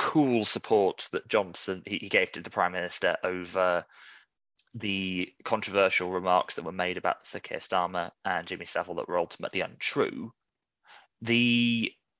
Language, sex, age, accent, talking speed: English, male, 20-39, British, 145 wpm